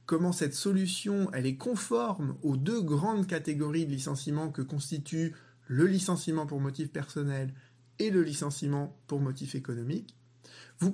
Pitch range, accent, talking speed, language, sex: 135-180 Hz, French, 135 wpm, French, male